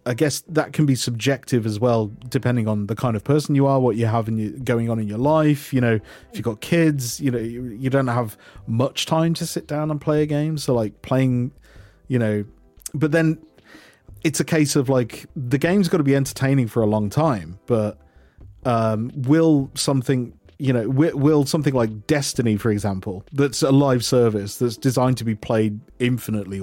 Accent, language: British, English